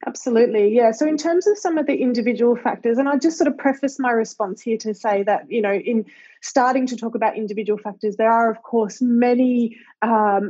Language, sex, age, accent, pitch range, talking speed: English, female, 20-39, Australian, 210-245 Hz, 215 wpm